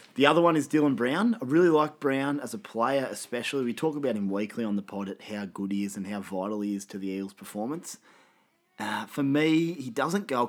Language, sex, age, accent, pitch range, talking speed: English, male, 30-49, Australian, 100-125 Hz, 240 wpm